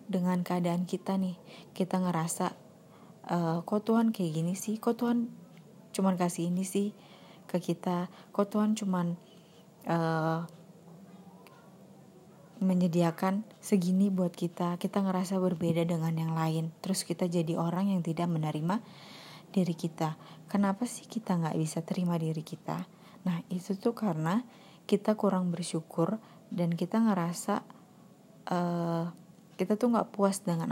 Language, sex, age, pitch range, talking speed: Indonesian, female, 20-39, 170-195 Hz, 130 wpm